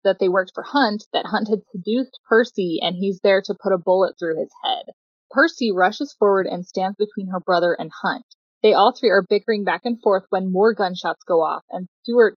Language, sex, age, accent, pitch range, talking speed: English, female, 20-39, American, 185-230 Hz, 220 wpm